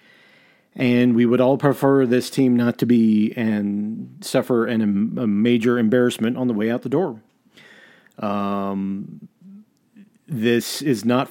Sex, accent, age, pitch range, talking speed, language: male, American, 40-59, 105-130 Hz, 135 wpm, English